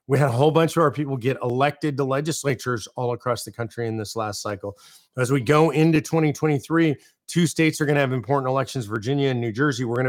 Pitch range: 120-155 Hz